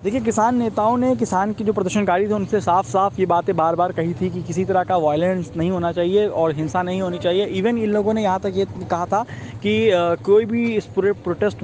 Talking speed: 240 wpm